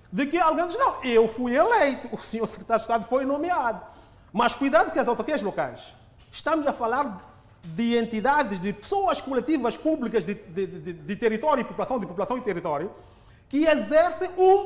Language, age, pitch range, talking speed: Portuguese, 30-49, 220-315 Hz, 180 wpm